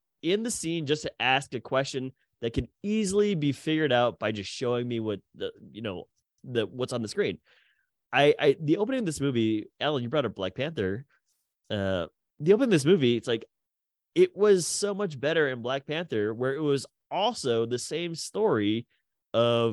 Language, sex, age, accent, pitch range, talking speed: English, male, 20-39, American, 105-145 Hz, 195 wpm